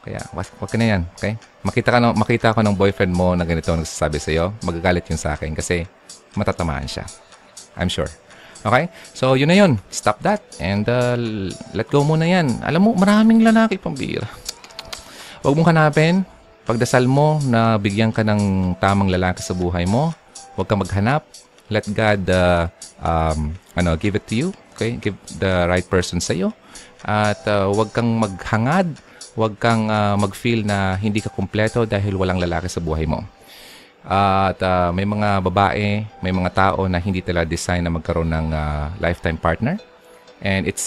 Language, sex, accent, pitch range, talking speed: Filipino, male, native, 85-115 Hz, 170 wpm